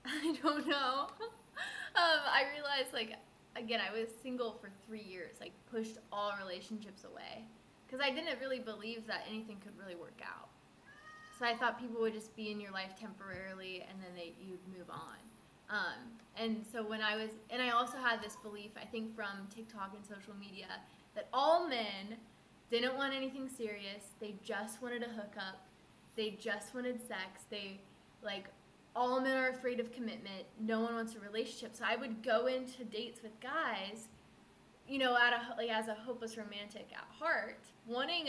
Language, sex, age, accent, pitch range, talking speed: English, female, 20-39, American, 210-255 Hz, 175 wpm